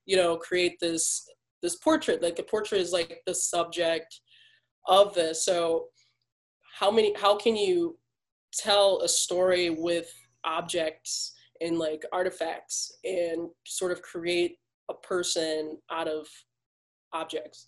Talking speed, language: 130 wpm, English